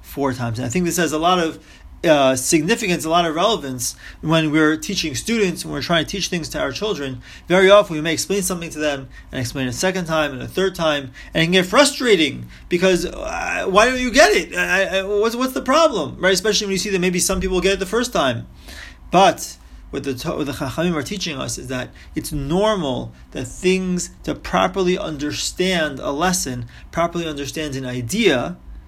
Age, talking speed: 30-49, 210 wpm